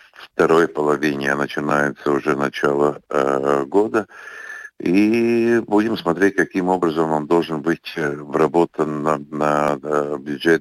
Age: 60-79